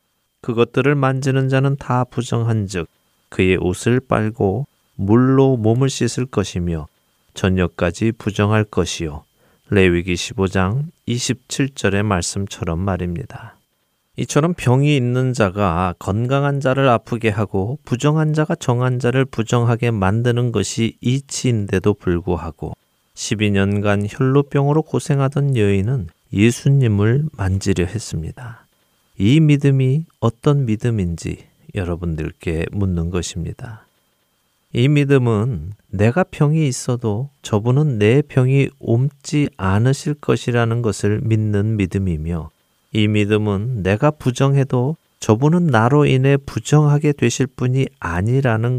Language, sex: Korean, male